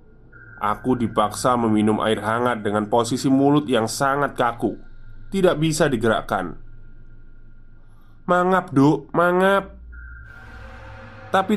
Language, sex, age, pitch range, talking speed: Indonesian, male, 20-39, 110-150 Hz, 95 wpm